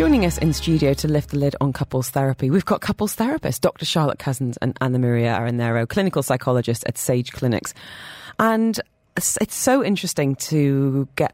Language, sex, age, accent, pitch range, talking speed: English, female, 30-49, British, 135-190 Hz, 175 wpm